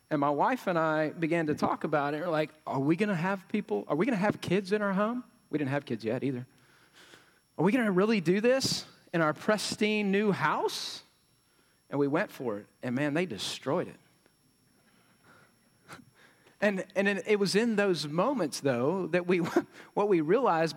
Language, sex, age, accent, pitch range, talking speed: English, male, 40-59, American, 145-185 Hz, 195 wpm